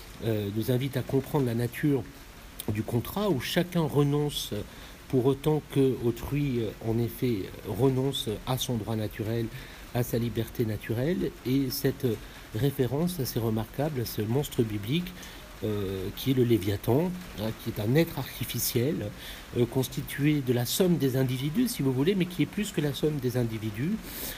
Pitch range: 115-145 Hz